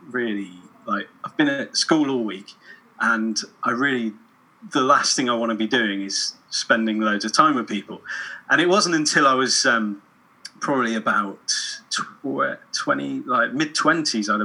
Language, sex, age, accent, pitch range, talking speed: English, male, 30-49, British, 105-140 Hz, 160 wpm